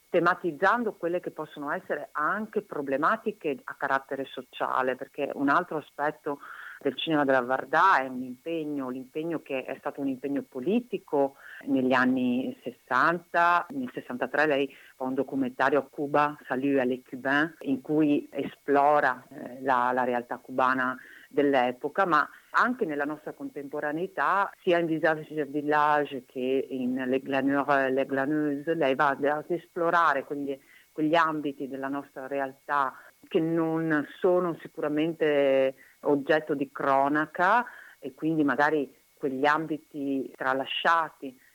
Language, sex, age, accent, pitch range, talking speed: Italian, female, 50-69, native, 135-155 Hz, 130 wpm